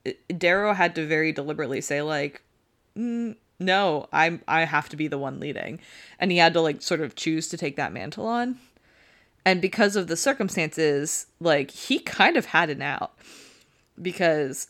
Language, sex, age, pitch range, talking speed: English, female, 20-39, 155-185 Hz, 180 wpm